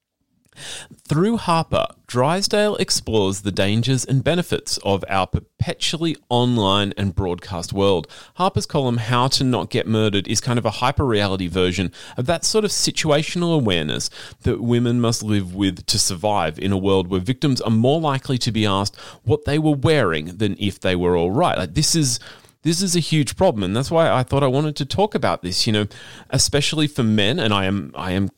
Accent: Australian